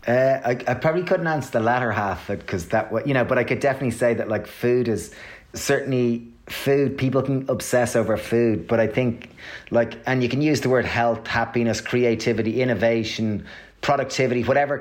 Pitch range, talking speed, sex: 115-135 Hz, 180 wpm, male